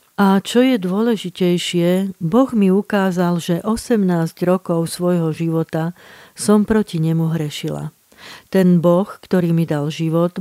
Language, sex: Slovak, female